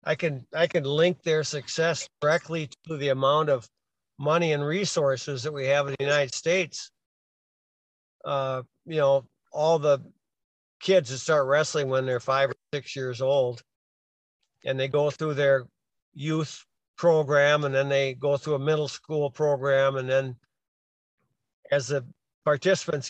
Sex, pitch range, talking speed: male, 130-150 Hz, 155 wpm